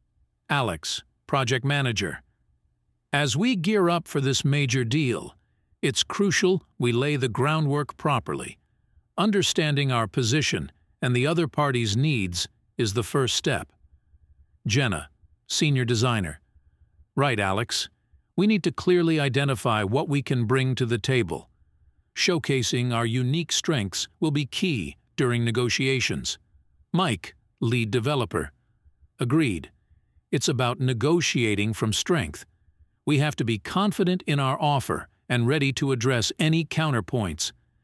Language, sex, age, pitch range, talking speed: English, male, 50-69, 110-155 Hz, 125 wpm